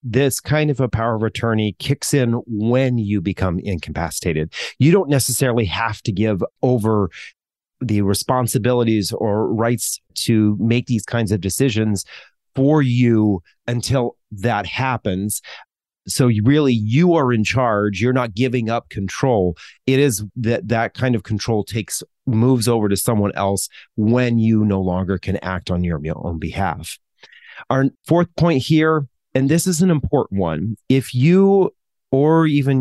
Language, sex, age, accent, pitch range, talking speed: English, male, 40-59, American, 105-130 Hz, 150 wpm